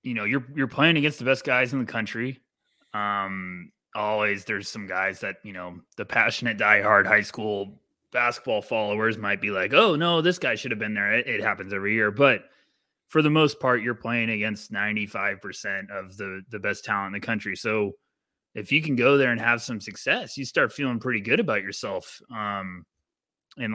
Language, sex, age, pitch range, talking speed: English, male, 20-39, 105-135 Hz, 200 wpm